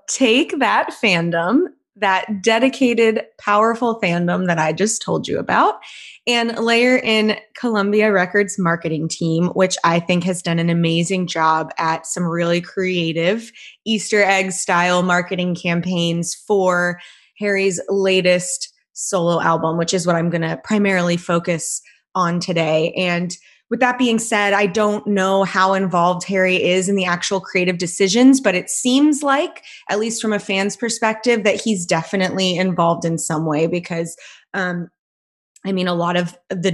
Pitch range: 175-205 Hz